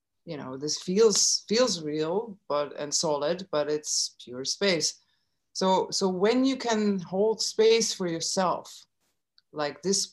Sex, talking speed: female, 140 wpm